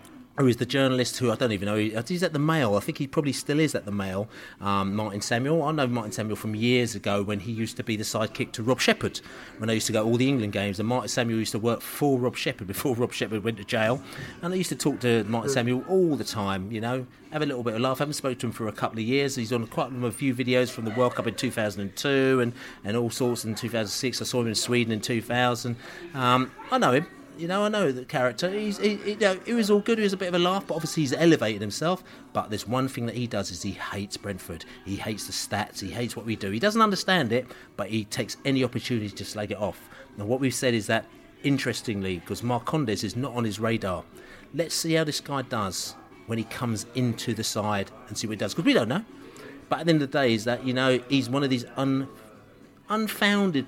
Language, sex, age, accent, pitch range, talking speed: English, male, 30-49, British, 110-140 Hz, 265 wpm